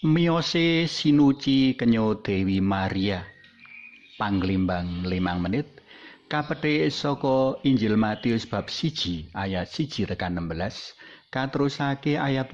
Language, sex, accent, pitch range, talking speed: Indonesian, male, native, 100-145 Hz, 95 wpm